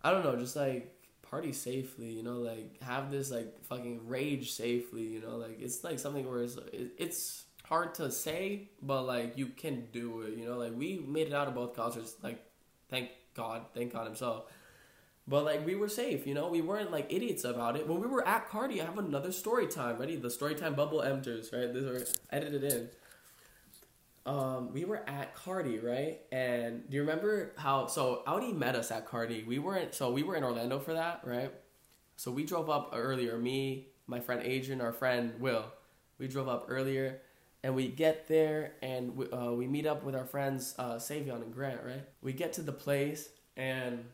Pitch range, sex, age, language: 120-145 Hz, male, 10-29, English